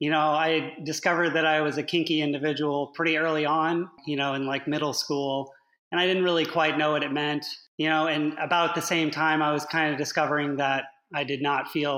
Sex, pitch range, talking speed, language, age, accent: male, 140-165 Hz, 225 wpm, English, 30-49, American